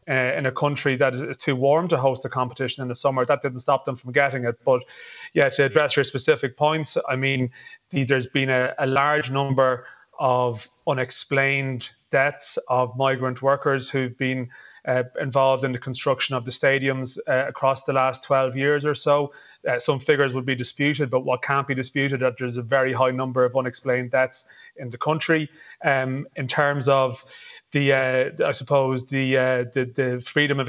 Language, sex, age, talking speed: English, male, 30-49, 195 wpm